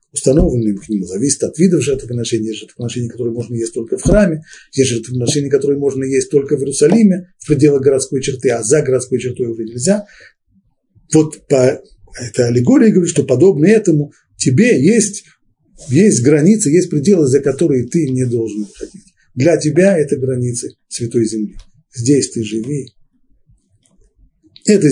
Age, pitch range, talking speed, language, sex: 50-69, 120-165 Hz, 150 wpm, Russian, male